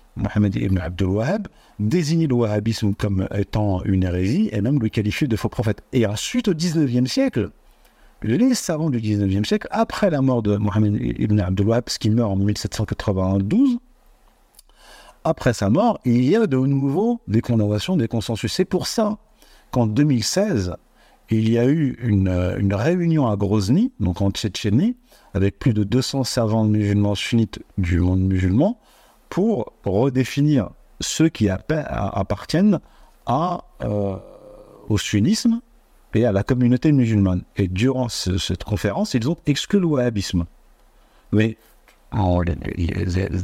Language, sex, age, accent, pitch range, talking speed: French, male, 50-69, French, 100-135 Hz, 145 wpm